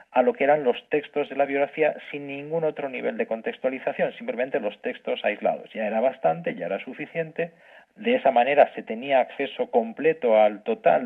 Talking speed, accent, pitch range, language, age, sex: 185 wpm, Spanish, 125-165 Hz, Spanish, 40-59, male